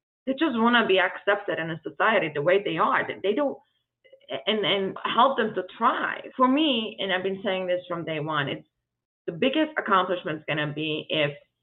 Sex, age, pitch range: female, 30-49, 180-240 Hz